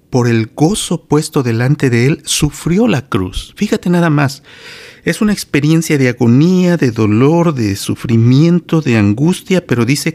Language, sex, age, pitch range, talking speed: Spanish, male, 50-69, 110-145 Hz, 155 wpm